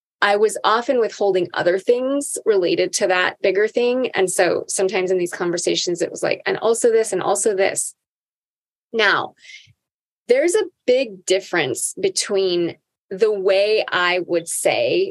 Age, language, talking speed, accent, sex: 20-39, English, 145 wpm, American, female